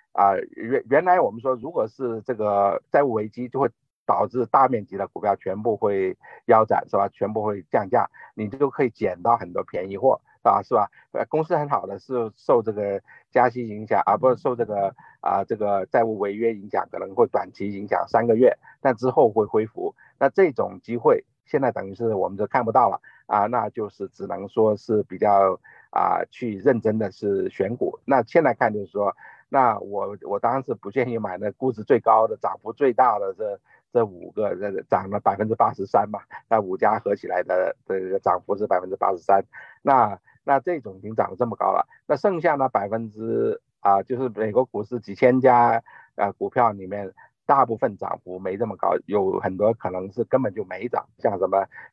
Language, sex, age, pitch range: Chinese, male, 50-69, 100-135 Hz